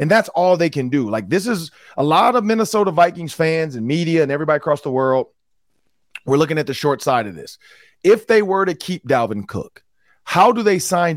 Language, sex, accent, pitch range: English, male, American, 155-215 Hz